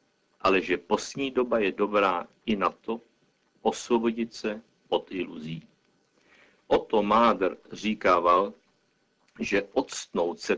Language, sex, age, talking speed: Czech, male, 60-79, 110 wpm